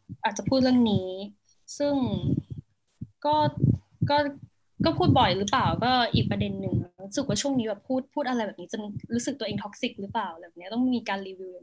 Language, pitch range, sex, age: Thai, 205-270 Hz, female, 10-29